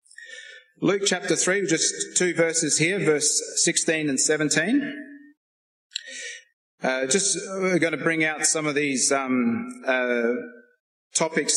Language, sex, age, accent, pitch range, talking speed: English, male, 30-49, Australian, 130-190 Hz, 125 wpm